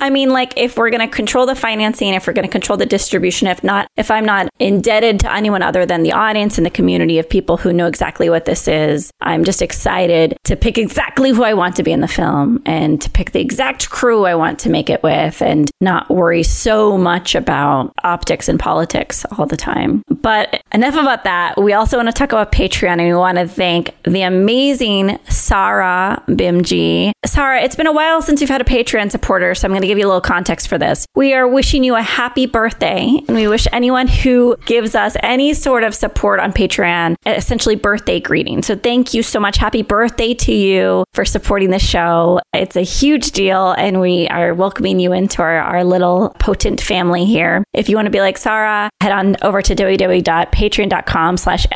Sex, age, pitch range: female, 20-39, 180-235 Hz